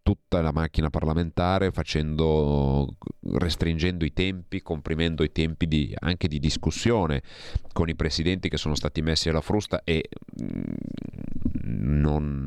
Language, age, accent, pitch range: Italian, 30-49, native, 70-85 Hz